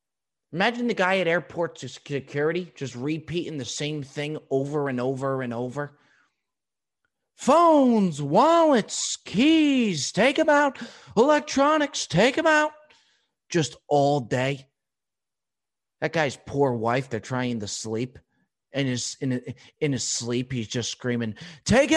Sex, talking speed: male, 125 wpm